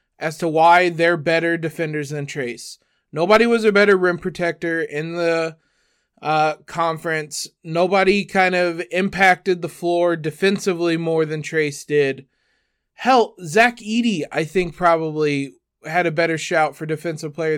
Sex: male